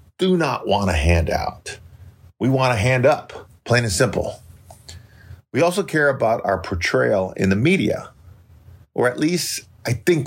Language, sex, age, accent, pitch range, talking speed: English, male, 50-69, American, 90-115 Hz, 165 wpm